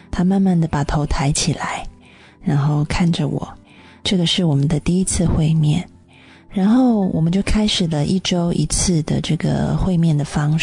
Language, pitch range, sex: Chinese, 160-190 Hz, female